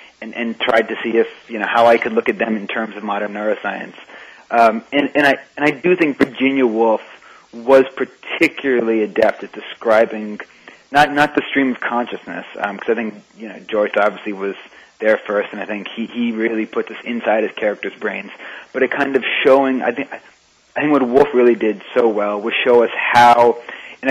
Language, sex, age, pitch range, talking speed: English, male, 30-49, 110-130 Hz, 205 wpm